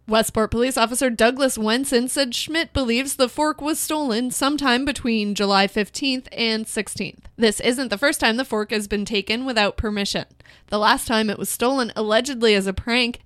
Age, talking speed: 20-39, 180 wpm